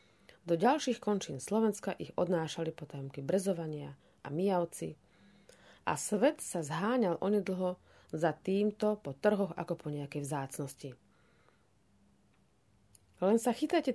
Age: 30-49